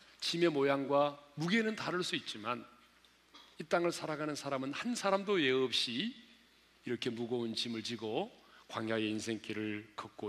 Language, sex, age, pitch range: Korean, male, 40-59, 135-195 Hz